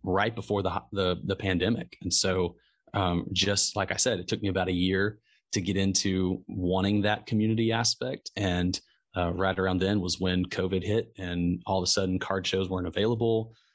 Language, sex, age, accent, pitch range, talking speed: English, male, 20-39, American, 90-100 Hz, 190 wpm